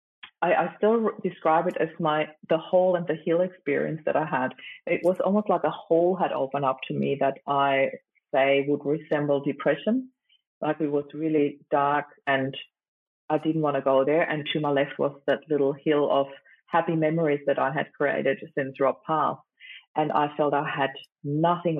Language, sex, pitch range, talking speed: English, female, 140-165 Hz, 185 wpm